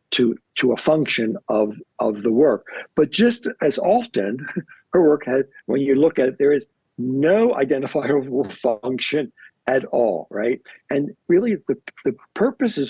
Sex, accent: male, American